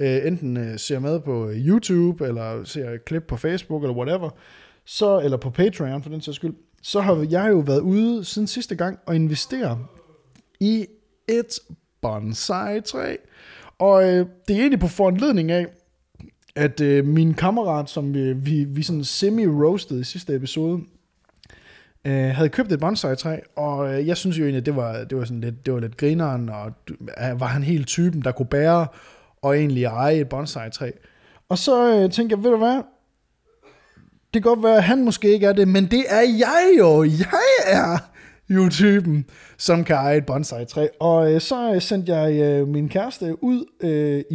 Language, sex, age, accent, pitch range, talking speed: Danish, male, 20-39, native, 140-195 Hz, 175 wpm